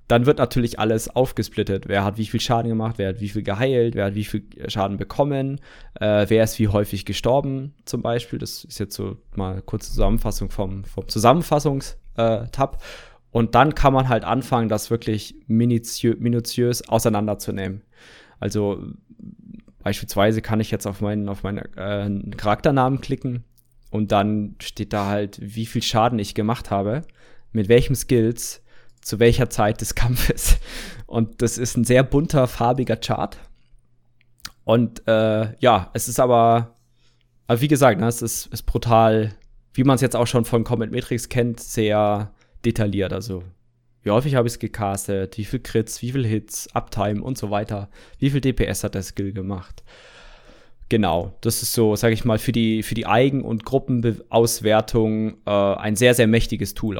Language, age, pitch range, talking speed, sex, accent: German, 20-39, 105-120 Hz, 170 wpm, male, German